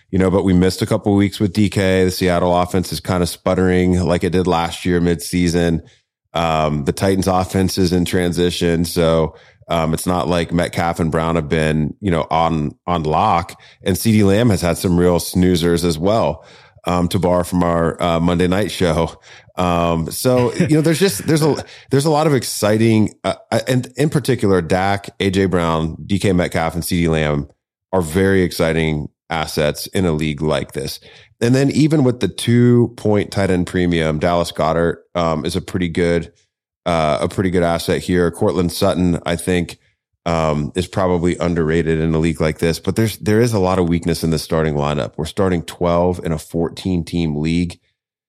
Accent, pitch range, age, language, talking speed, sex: American, 85-95 Hz, 30-49, English, 195 wpm, male